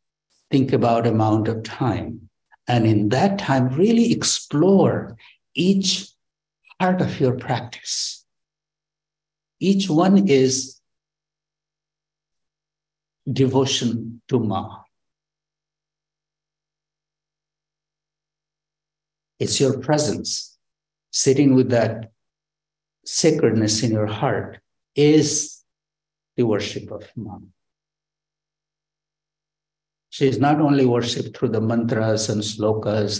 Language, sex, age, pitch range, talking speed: English, male, 60-79, 115-155 Hz, 85 wpm